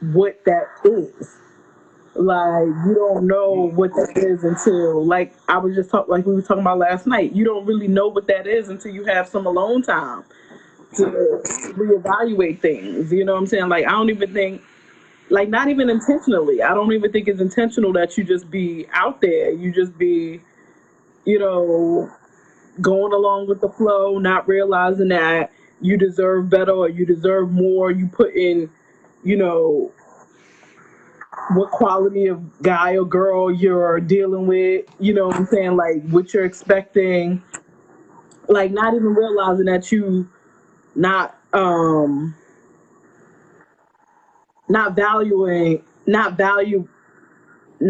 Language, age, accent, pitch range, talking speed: English, 20-39, American, 180-205 Hz, 150 wpm